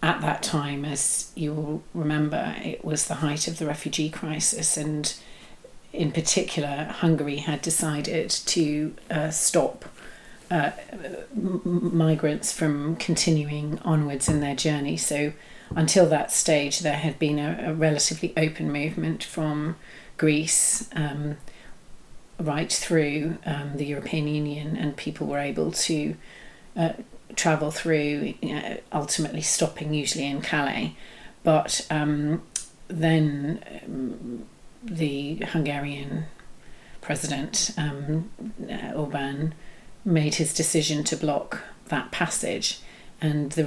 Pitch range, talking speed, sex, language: 150-165 Hz, 120 wpm, female, English